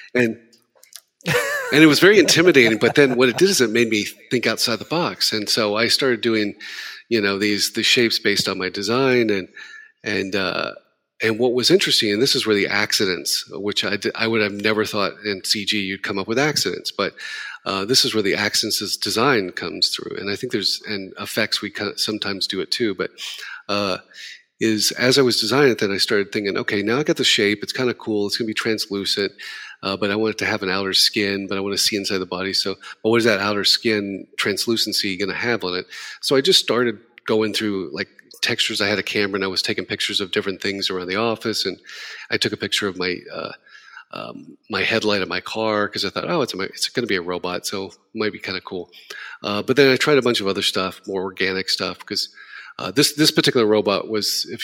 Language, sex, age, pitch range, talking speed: English, male, 40-59, 100-115 Hz, 240 wpm